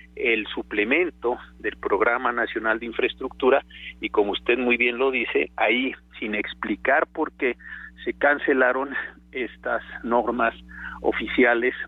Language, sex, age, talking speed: Spanish, male, 50-69, 120 wpm